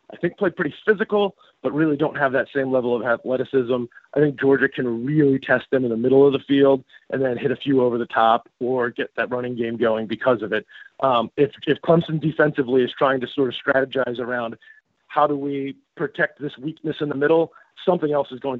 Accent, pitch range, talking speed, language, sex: American, 130-150 Hz, 225 wpm, English, male